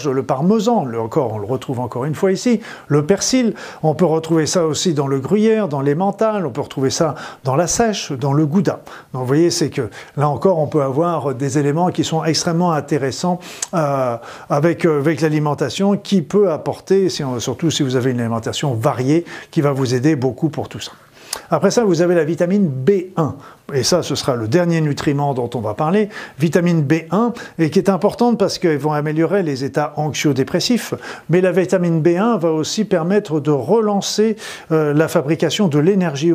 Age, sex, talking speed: 50-69, male, 195 wpm